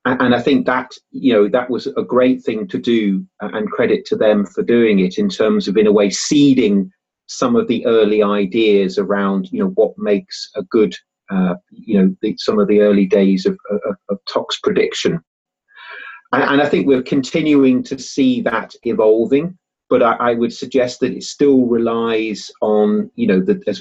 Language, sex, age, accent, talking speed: English, male, 30-49, British, 195 wpm